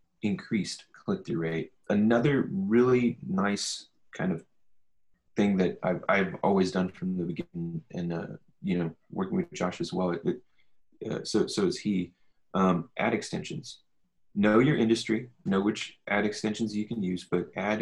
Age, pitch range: 30-49, 90-125 Hz